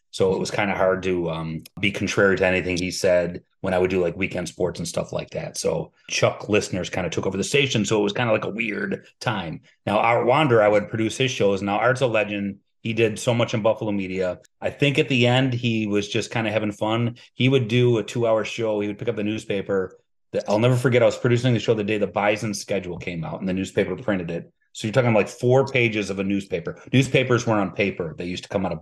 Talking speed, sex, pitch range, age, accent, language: 260 wpm, male, 95-125 Hz, 30-49, American, English